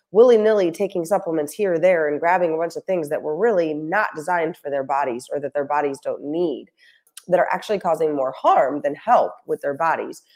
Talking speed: 215 wpm